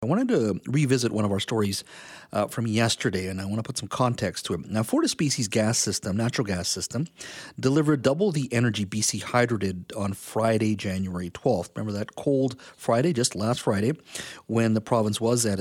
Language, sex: English, male